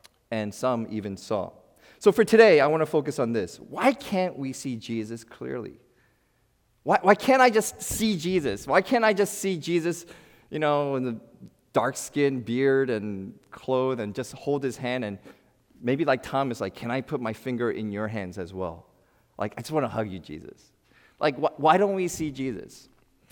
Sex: male